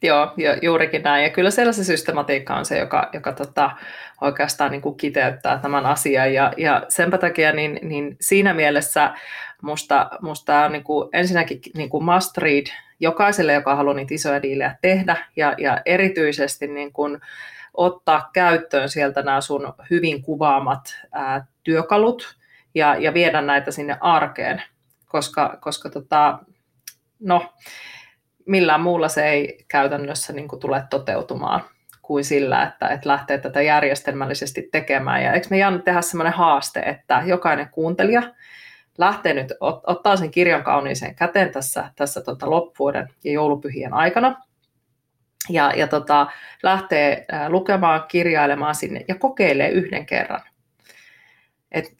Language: Finnish